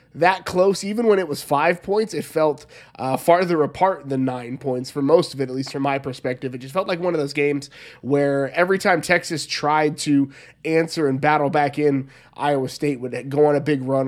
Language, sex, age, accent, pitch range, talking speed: English, male, 20-39, American, 140-175 Hz, 220 wpm